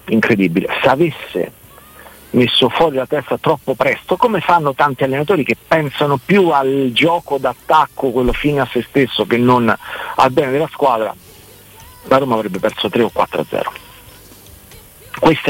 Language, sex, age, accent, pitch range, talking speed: Italian, male, 50-69, native, 115-155 Hz, 155 wpm